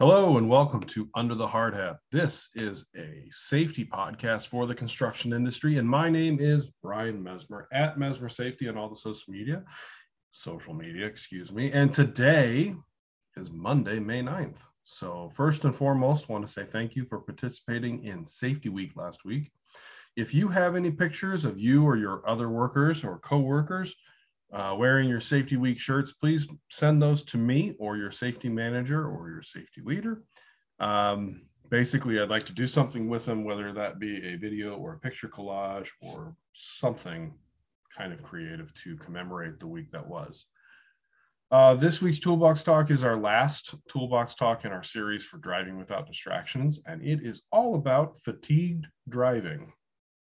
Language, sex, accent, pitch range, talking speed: English, male, American, 110-150 Hz, 170 wpm